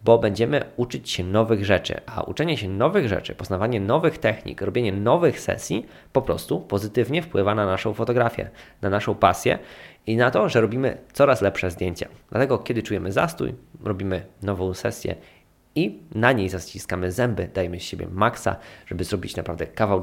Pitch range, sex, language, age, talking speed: 95-120 Hz, male, Polish, 20-39, 160 wpm